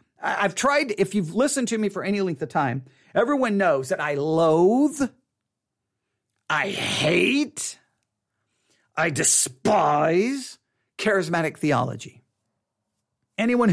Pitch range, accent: 135-195 Hz, American